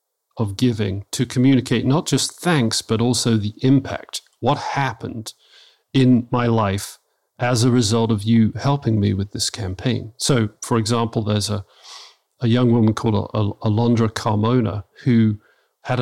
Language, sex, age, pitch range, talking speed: English, male, 40-59, 110-125 Hz, 145 wpm